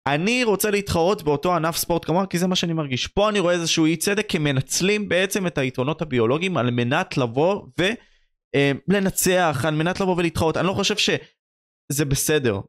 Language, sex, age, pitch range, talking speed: Hebrew, male, 20-39, 135-190 Hz, 180 wpm